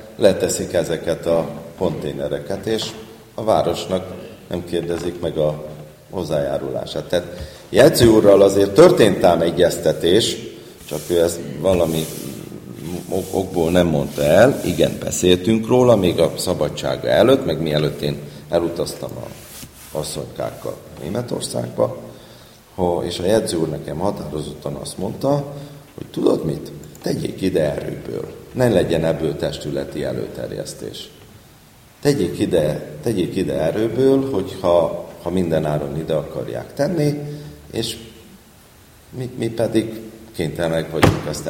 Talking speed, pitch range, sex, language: 110 wpm, 75-115 Hz, male, Hungarian